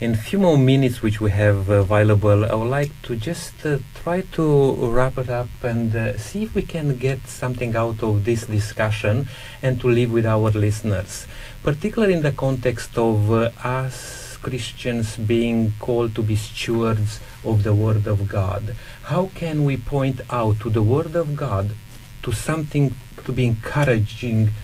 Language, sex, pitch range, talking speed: English, male, 110-130 Hz, 175 wpm